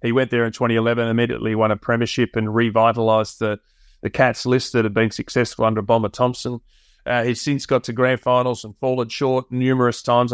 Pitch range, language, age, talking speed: 110-125 Hz, English, 30-49, 195 wpm